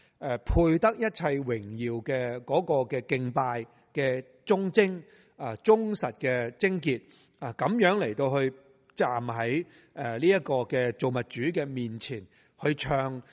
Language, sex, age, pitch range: Chinese, male, 30-49, 125-165 Hz